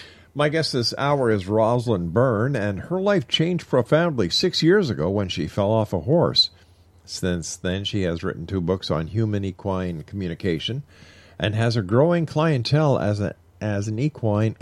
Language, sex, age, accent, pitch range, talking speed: English, male, 50-69, American, 90-115 Hz, 165 wpm